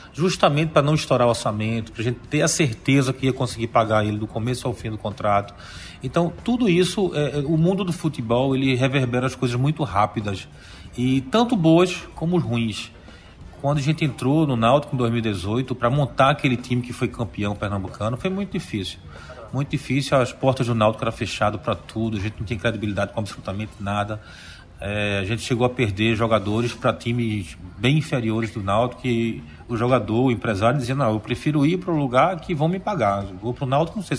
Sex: male